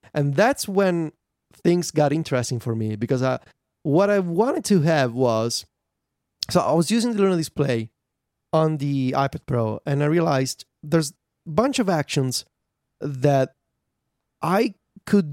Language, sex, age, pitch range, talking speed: English, male, 30-49, 130-175 Hz, 145 wpm